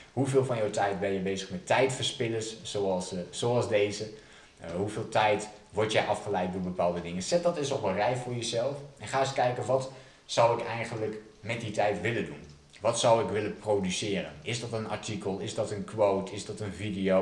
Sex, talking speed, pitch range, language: male, 210 wpm, 95-130 Hz, Dutch